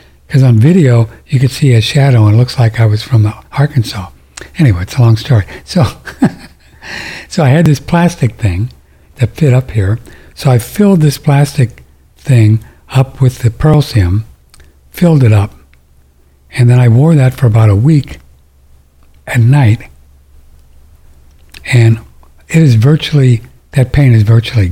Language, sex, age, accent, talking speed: English, male, 60-79, American, 160 wpm